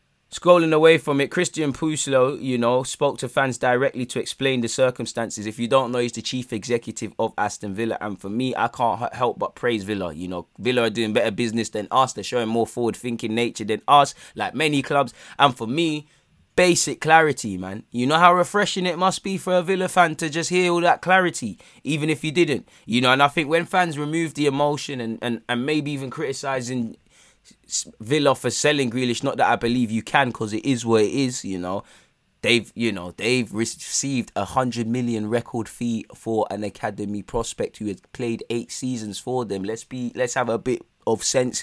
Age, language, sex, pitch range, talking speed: 20-39, English, male, 110-145 Hz, 210 wpm